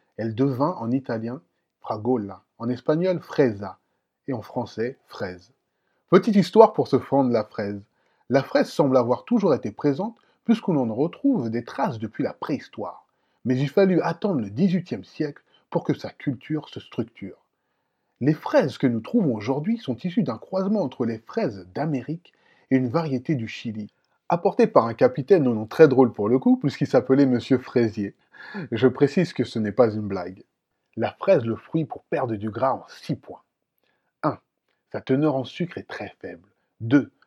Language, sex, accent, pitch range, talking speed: French, male, French, 115-155 Hz, 175 wpm